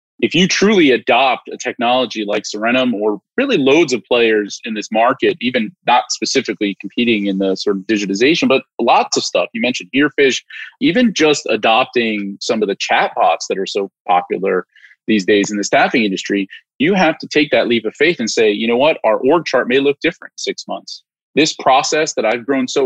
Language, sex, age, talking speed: English, male, 30-49, 200 wpm